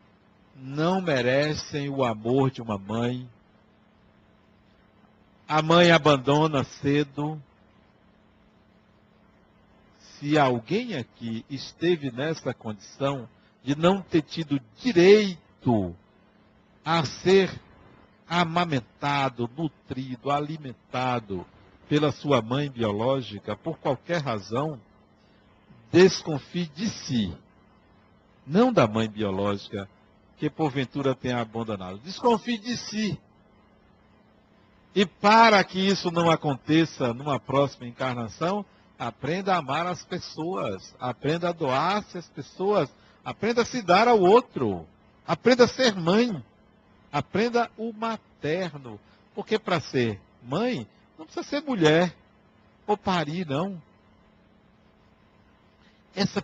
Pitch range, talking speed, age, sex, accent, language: 120-175 Hz, 100 wpm, 60-79, male, Brazilian, Portuguese